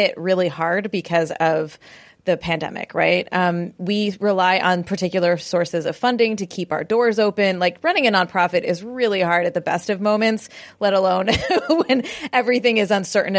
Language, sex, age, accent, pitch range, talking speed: English, female, 20-39, American, 180-235 Hz, 175 wpm